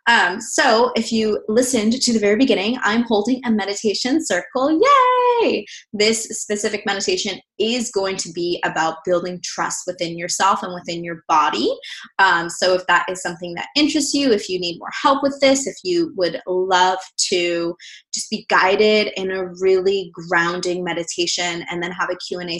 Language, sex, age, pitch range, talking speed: English, female, 20-39, 180-220 Hz, 175 wpm